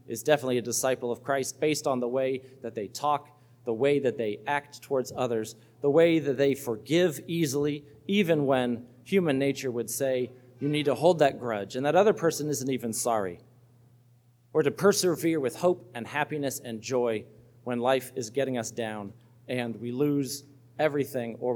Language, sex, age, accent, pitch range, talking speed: English, male, 40-59, American, 120-150 Hz, 180 wpm